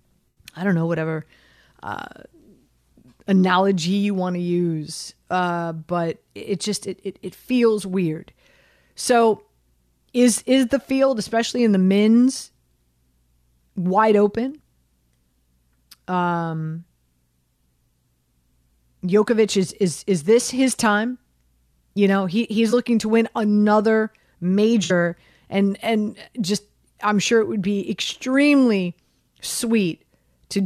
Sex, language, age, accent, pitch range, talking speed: female, English, 30-49, American, 170-220 Hz, 115 wpm